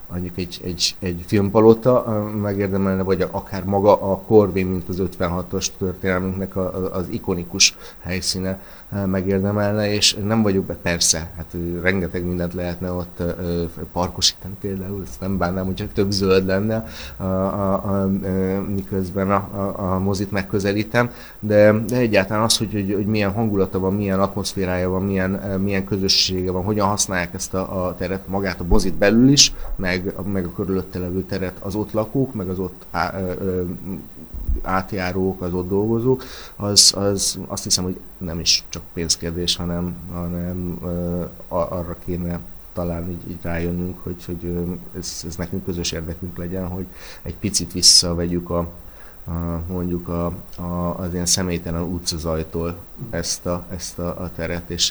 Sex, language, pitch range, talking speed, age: male, Hungarian, 85-95 Hz, 155 wpm, 30-49